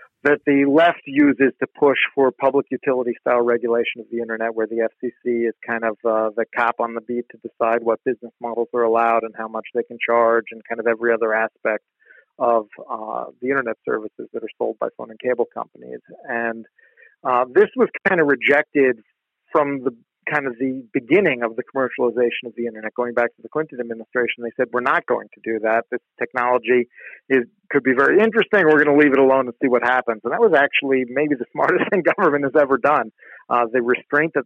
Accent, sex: American, male